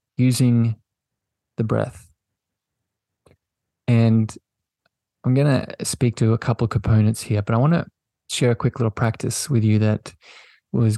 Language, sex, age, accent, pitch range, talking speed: English, male, 20-39, Australian, 110-120 Hz, 150 wpm